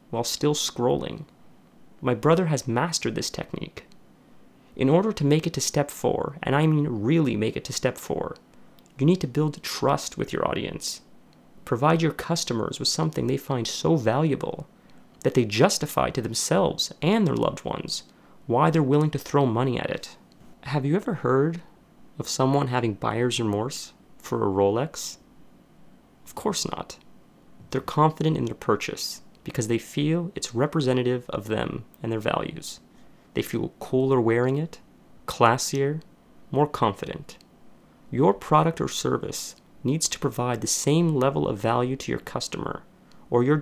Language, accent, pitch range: English, American, 120-155 Hz